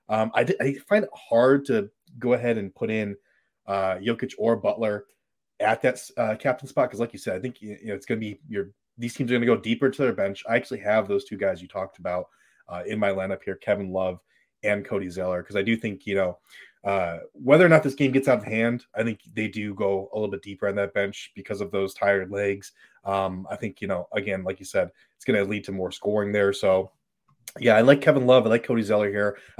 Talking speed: 255 wpm